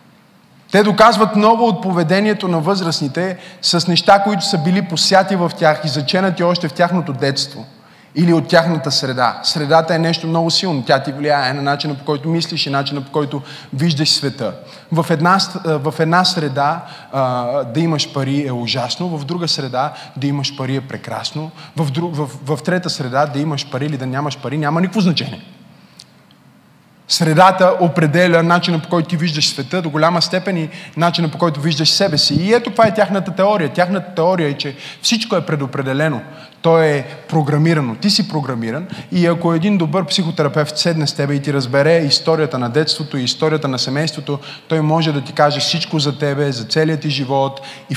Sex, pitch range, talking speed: male, 140-180 Hz, 180 wpm